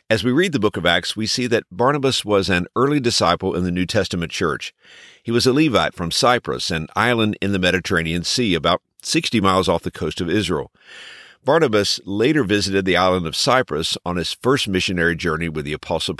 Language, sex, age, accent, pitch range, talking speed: English, male, 50-69, American, 90-130 Hz, 205 wpm